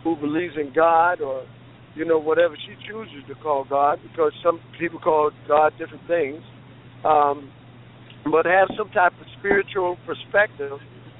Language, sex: English, male